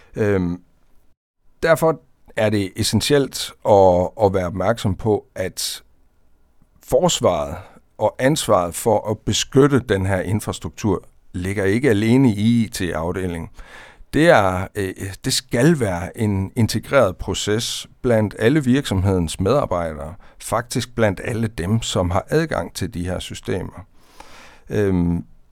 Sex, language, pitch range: male, Danish, 90-115 Hz